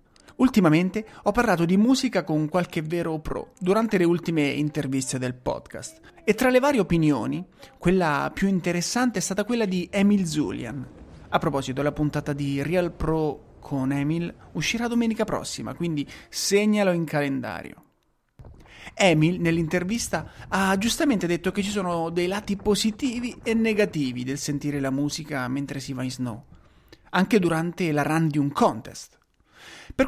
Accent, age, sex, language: native, 30-49, male, Italian